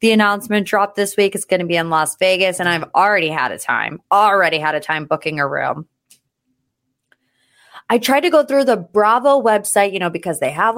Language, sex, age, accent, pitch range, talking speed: English, female, 20-39, American, 170-250 Hz, 210 wpm